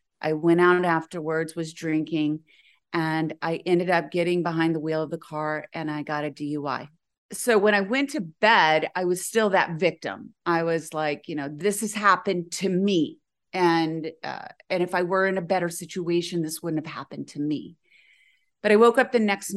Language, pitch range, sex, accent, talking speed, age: English, 160-185 Hz, female, American, 200 wpm, 30-49